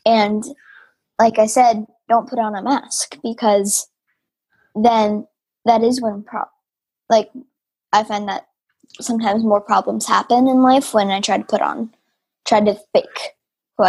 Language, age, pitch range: English, 10-29, 210-245 Hz